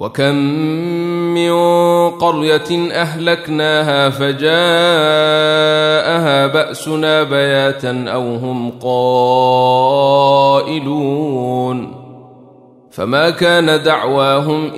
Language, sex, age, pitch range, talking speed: Arabic, male, 30-49, 125-155 Hz, 55 wpm